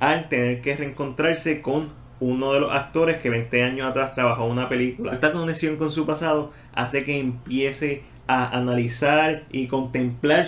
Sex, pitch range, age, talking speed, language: male, 120-140 Hz, 20-39, 165 wpm, Spanish